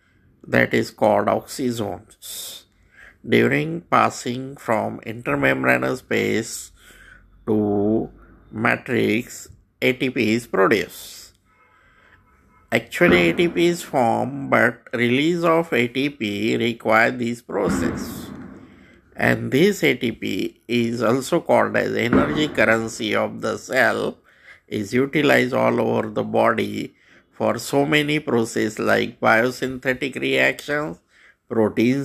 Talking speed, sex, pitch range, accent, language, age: 95 wpm, male, 110-145 Hz, native, Hindi, 50-69